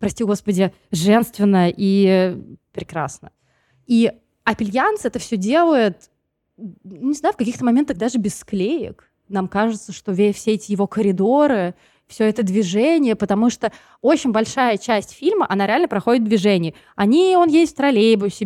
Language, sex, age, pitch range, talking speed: Russian, female, 20-39, 190-240 Hz, 145 wpm